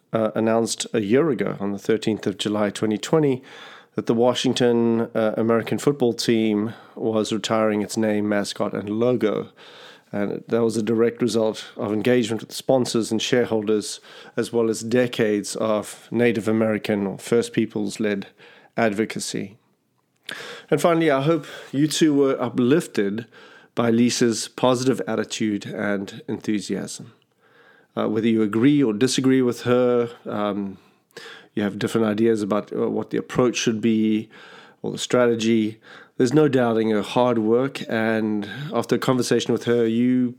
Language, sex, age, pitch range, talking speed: English, male, 40-59, 110-125 Hz, 145 wpm